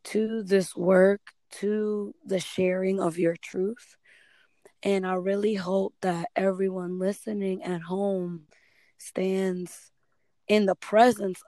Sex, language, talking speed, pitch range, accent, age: female, English, 115 wpm, 185-220 Hz, American, 20-39